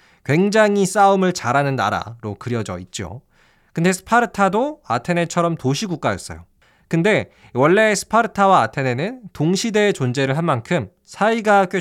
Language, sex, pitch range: Korean, male, 125-205 Hz